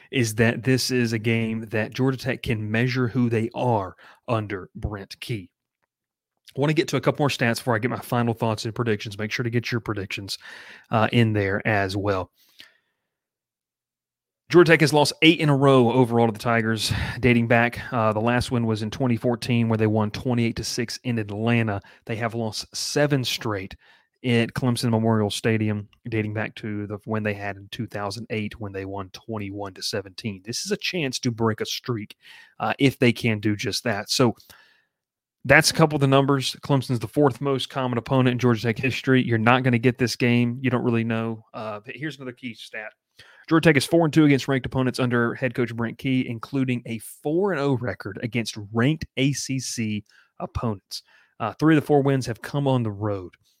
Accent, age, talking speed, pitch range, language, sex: American, 30-49, 200 wpm, 110-130 Hz, English, male